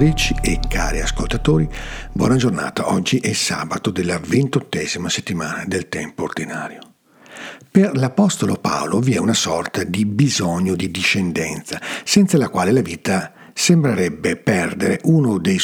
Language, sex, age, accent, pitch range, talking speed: Italian, male, 50-69, native, 100-165 Hz, 130 wpm